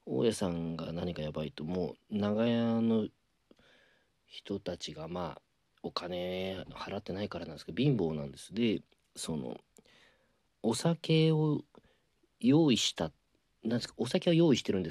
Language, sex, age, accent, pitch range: Japanese, male, 40-59, native, 85-135 Hz